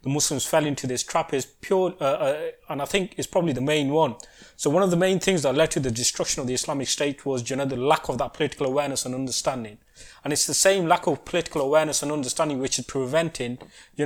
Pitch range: 135-165 Hz